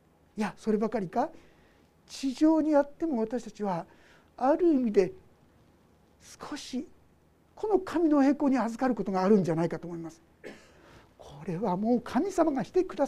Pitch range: 185-290 Hz